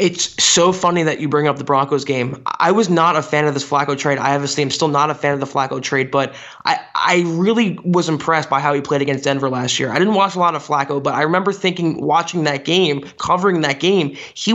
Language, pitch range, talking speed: English, 145-175 Hz, 255 wpm